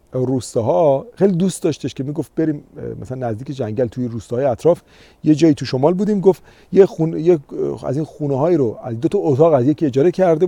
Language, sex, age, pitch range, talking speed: Persian, male, 40-59, 120-170 Hz, 200 wpm